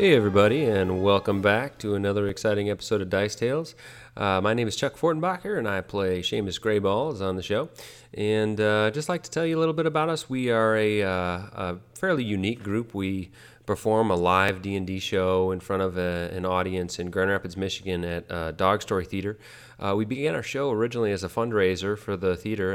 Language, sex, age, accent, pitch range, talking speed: English, male, 30-49, American, 95-115 Hz, 210 wpm